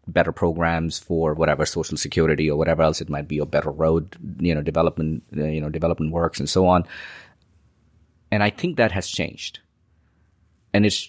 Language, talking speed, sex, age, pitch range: English, 180 wpm, male, 30-49, 85-105 Hz